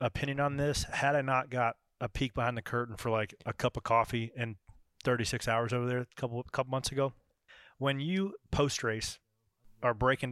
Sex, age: male, 30-49